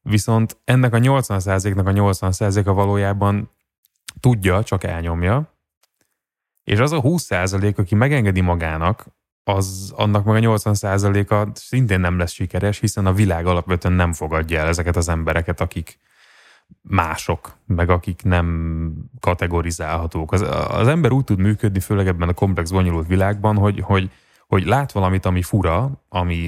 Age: 20-39